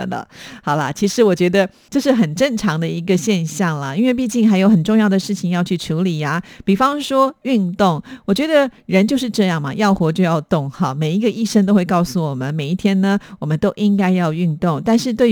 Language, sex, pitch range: Chinese, female, 165-210 Hz